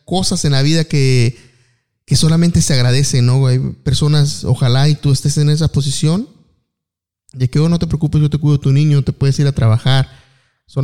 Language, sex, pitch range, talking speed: Spanish, male, 140-165 Hz, 205 wpm